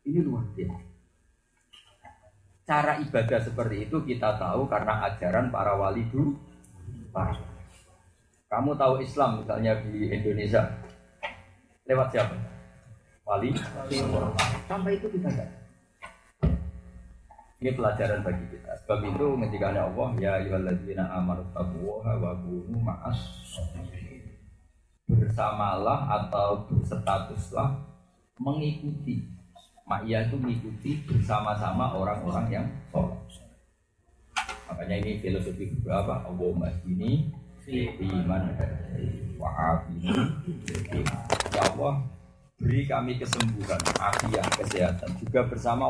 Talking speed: 75 wpm